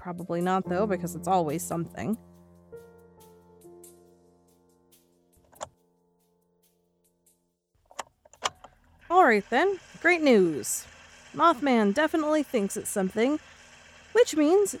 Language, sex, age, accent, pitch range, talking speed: English, female, 20-39, American, 165-250 Hz, 75 wpm